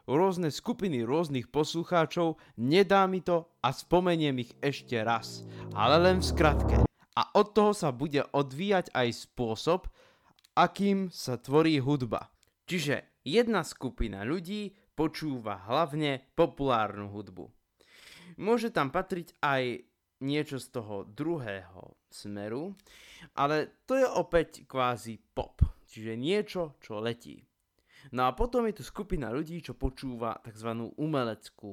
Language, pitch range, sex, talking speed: Slovak, 115-170 Hz, male, 125 wpm